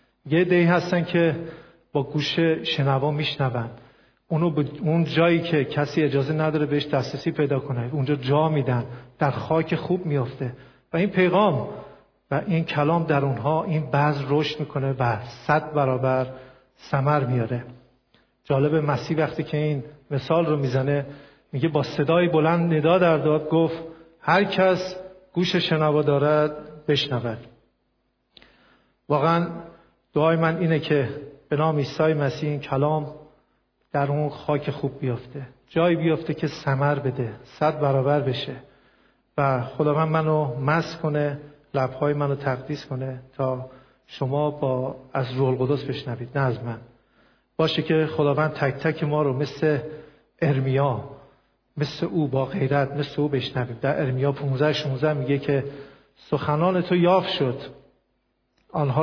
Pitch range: 135-160 Hz